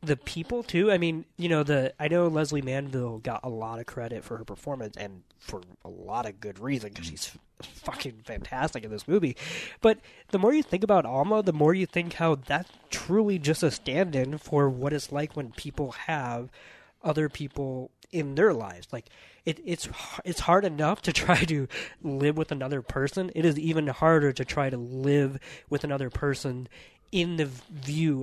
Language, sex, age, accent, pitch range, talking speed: English, male, 20-39, American, 120-160 Hz, 190 wpm